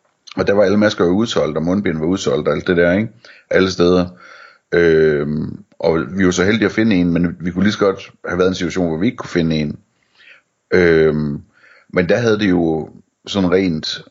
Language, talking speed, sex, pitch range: Danish, 225 wpm, male, 85-100 Hz